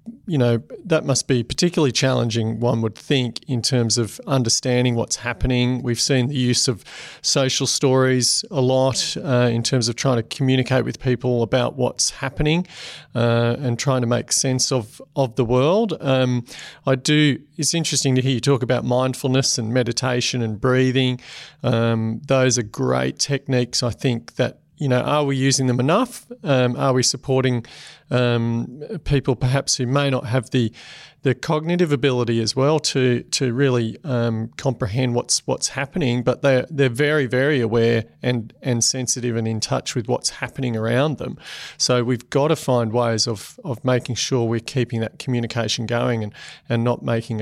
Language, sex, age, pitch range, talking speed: English, male, 40-59, 120-140 Hz, 175 wpm